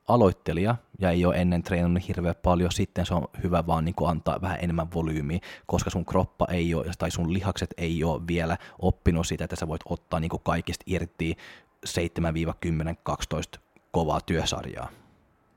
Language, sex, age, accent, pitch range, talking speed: Finnish, male, 20-39, native, 85-110 Hz, 160 wpm